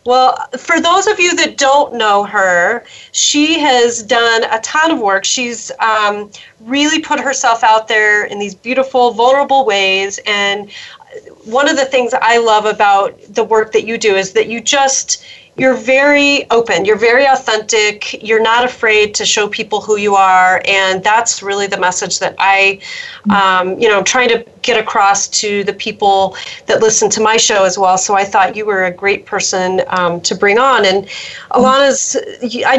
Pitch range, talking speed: 195-250 Hz, 180 wpm